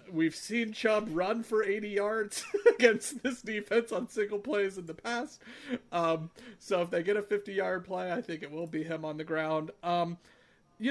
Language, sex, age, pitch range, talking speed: English, male, 40-59, 155-205 Hz, 195 wpm